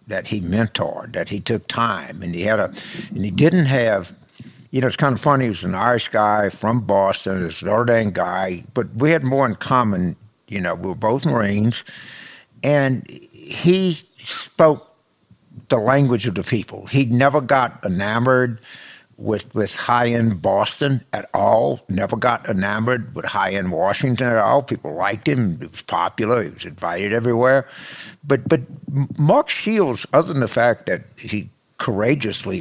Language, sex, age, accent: English, male, 60-79, American